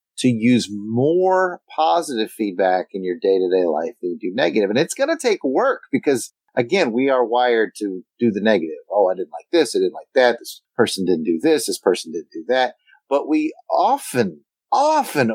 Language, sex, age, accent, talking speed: English, male, 40-59, American, 200 wpm